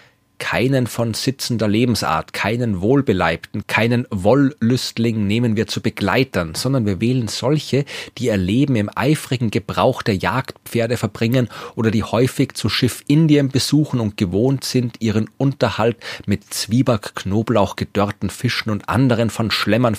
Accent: German